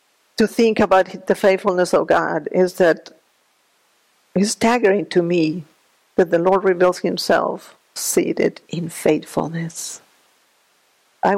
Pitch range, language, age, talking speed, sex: 175-200 Hz, English, 50-69, 115 wpm, female